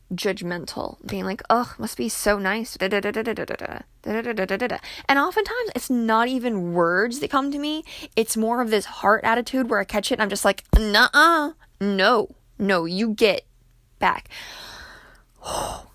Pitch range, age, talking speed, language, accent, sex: 190-255 Hz, 20-39, 150 wpm, English, American, female